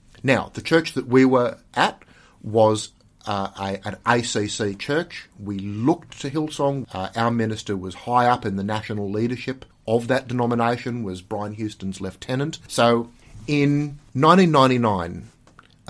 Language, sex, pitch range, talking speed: English, male, 105-140 Hz, 140 wpm